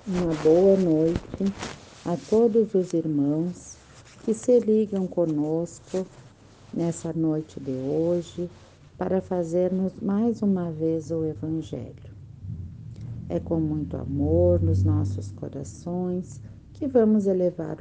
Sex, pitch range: female, 125-180 Hz